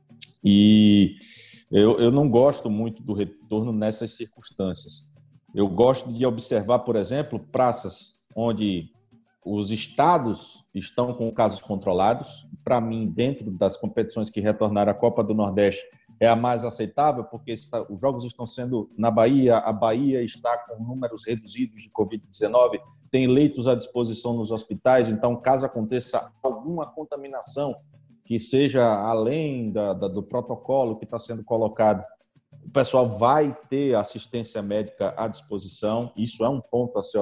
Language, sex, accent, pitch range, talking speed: Portuguese, male, Brazilian, 110-130 Hz, 145 wpm